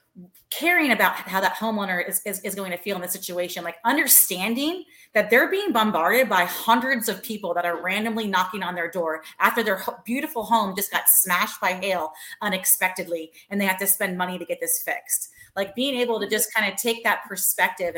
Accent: American